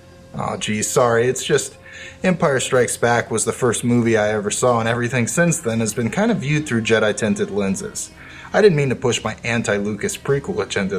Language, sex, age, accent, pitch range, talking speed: English, male, 30-49, American, 110-180 Hz, 195 wpm